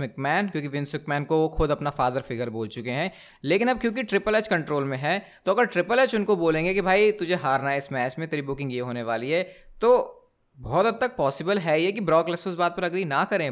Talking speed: 235 wpm